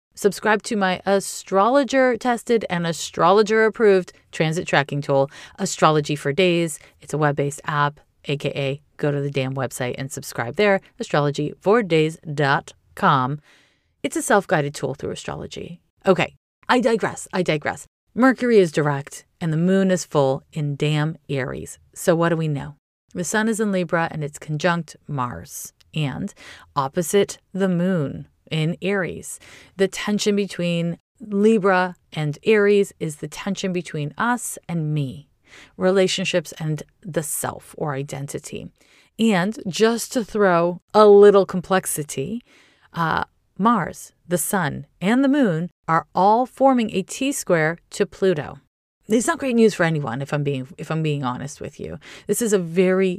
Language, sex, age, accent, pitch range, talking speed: English, female, 30-49, American, 150-205 Hz, 140 wpm